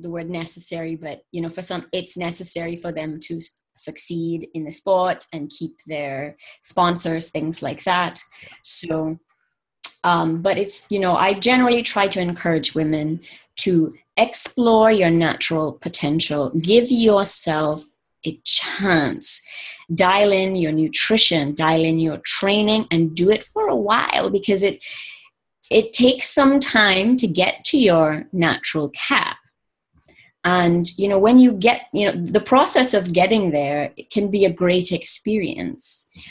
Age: 30-49